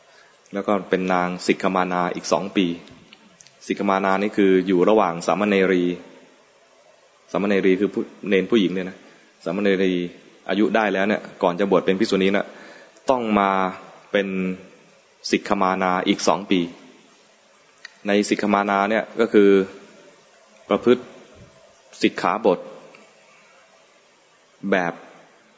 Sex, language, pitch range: male, English, 95-105 Hz